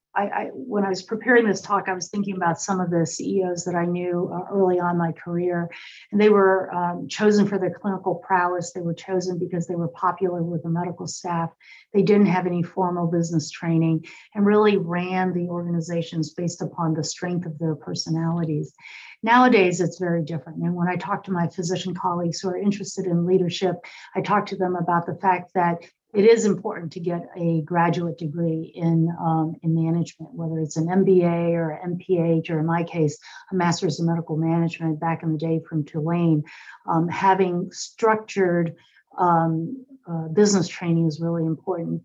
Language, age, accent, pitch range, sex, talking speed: English, 50-69, American, 165-185 Hz, female, 185 wpm